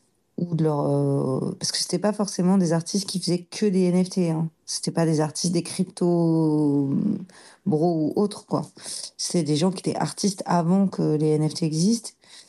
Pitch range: 165-200 Hz